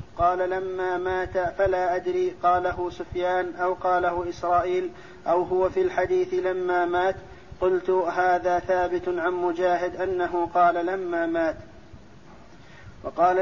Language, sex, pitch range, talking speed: Arabic, male, 180-190 Hz, 115 wpm